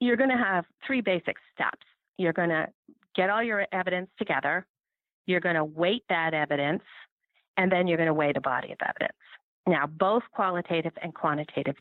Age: 40-59